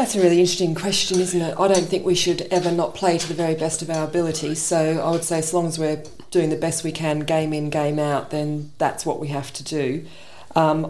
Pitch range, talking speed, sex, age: 150-175 Hz, 260 wpm, female, 40-59